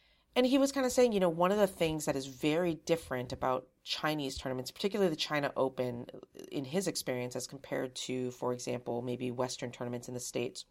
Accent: American